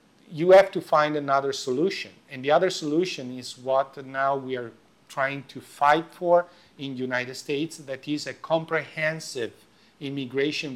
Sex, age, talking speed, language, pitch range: male, 50-69, 155 wpm, German, 125-155 Hz